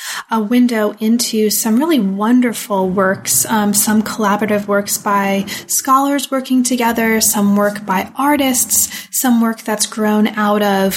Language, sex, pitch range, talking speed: English, female, 205-245 Hz, 135 wpm